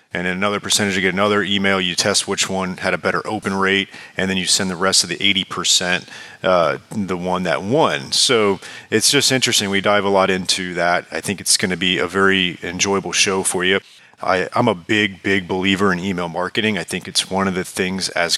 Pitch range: 95-110 Hz